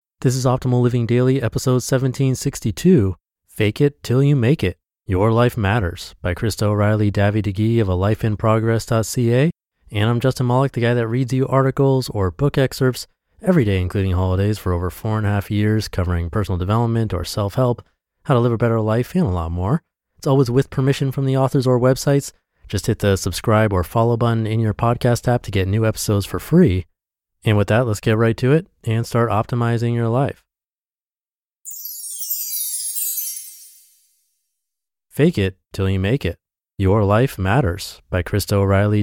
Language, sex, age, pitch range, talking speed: English, male, 30-49, 95-125 Hz, 175 wpm